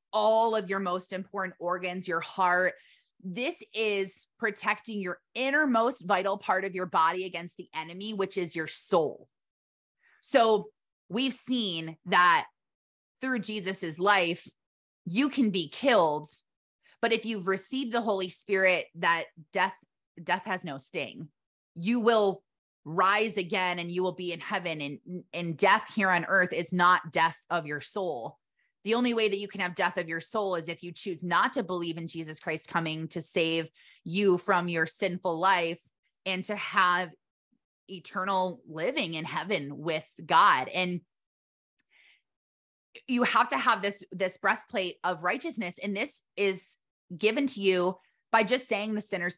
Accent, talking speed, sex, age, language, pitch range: American, 160 wpm, female, 20-39, English, 170-215 Hz